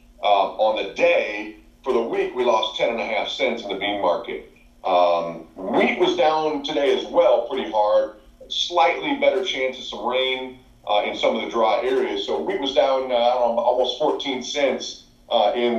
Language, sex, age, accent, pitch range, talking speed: English, male, 40-59, American, 105-150 Hz, 200 wpm